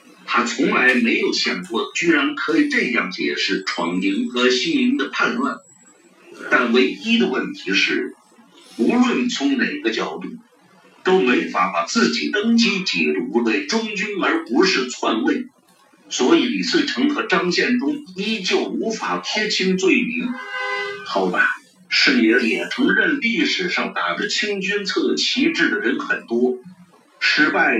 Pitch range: 190-295 Hz